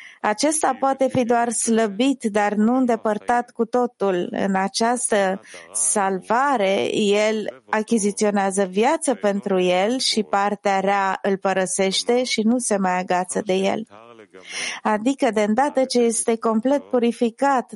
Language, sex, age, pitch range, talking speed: English, female, 30-49, 195-235 Hz, 125 wpm